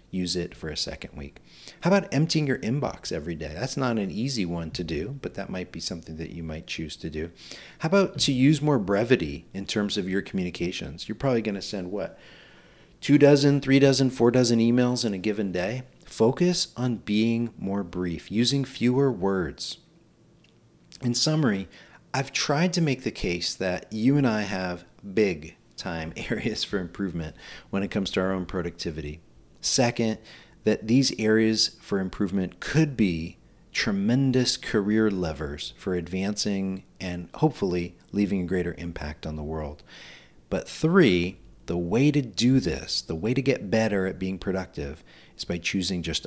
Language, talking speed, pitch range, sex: English, 170 wpm, 90-125 Hz, male